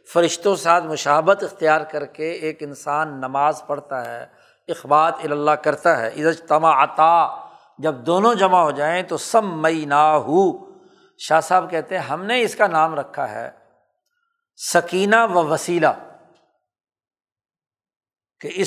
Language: Urdu